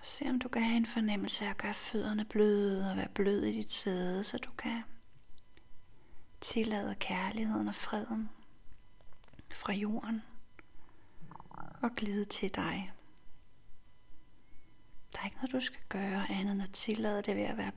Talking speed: 155 wpm